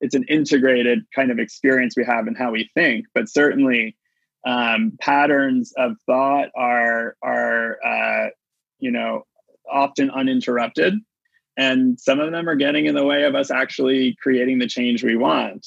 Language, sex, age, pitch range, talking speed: English, male, 20-39, 120-145 Hz, 160 wpm